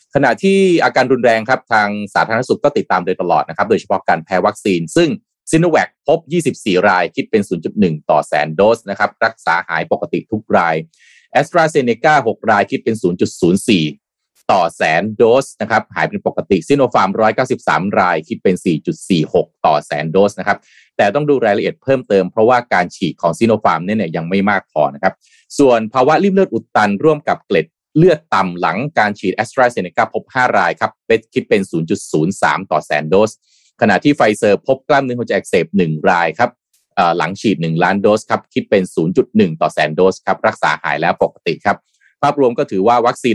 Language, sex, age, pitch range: Thai, male, 20-39, 95-135 Hz